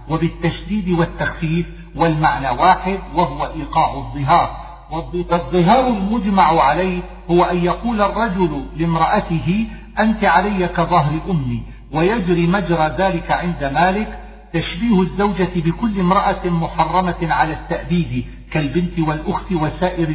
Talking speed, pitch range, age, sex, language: 100 wpm, 155-190 Hz, 50-69, male, Arabic